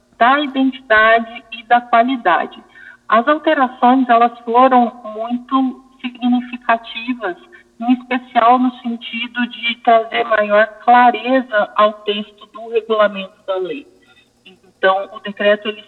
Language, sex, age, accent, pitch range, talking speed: Portuguese, female, 40-59, Brazilian, 210-255 Hz, 110 wpm